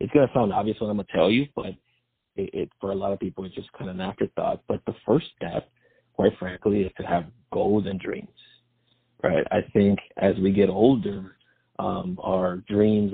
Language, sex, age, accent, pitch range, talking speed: English, male, 30-49, American, 95-110 Hz, 215 wpm